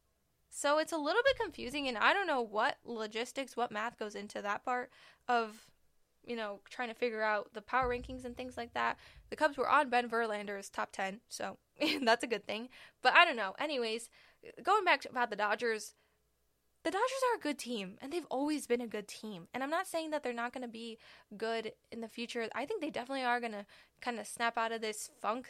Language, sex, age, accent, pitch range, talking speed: English, female, 10-29, American, 215-265 Hz, 225 wpm